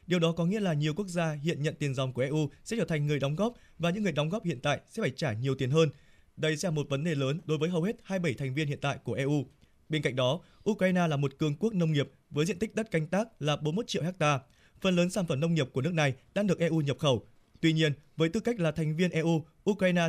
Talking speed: 285 wpm